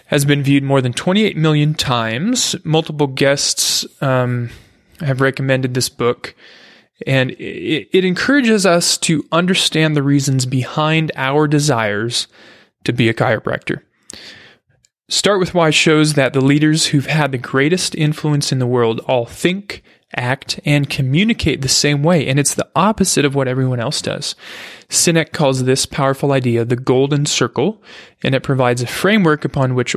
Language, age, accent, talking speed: English, 20-39, American, 155 wpm